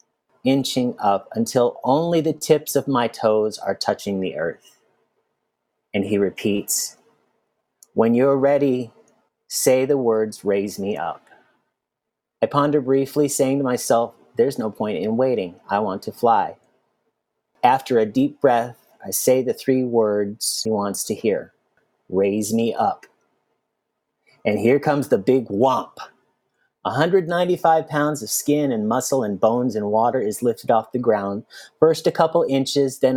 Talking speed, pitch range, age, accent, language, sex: 150 wpm, 115-145 Hz, 30-49, American, English, male